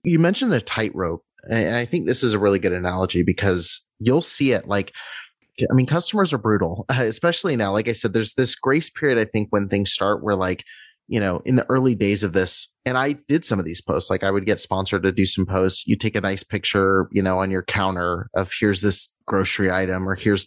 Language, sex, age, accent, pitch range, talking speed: English, male, 30-49, American, 95-115 Hz, 235 wpm